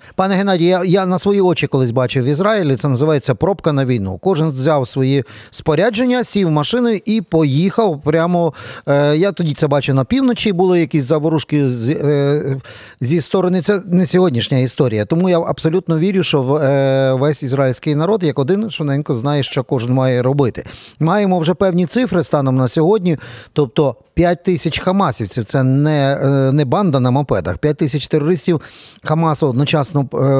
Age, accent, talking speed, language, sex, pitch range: 40-59, native, 165 wpm, Ukrainian, male, 130-170 Hz